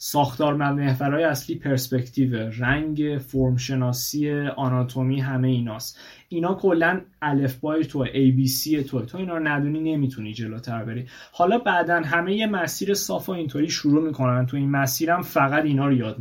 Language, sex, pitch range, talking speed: Persian, male, 130-155 Hz, 150 wpm